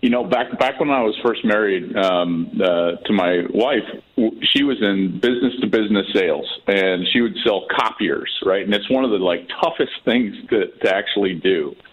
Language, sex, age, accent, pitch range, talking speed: English, male, 40-59, American, 105-165 Hz, 185 wpm